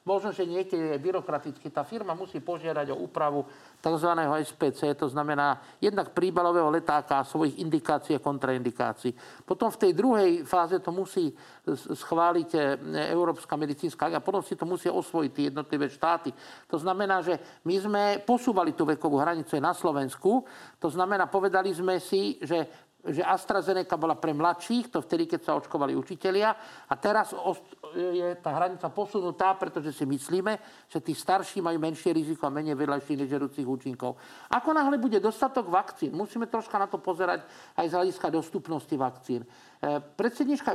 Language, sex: Slovak, male